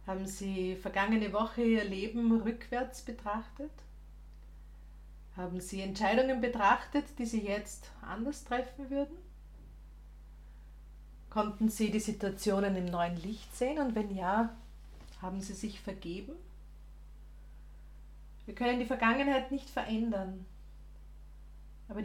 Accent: Austrian